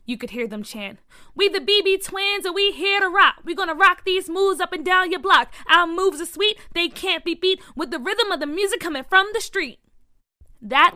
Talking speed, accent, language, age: 235 wpm, American, English, 20-39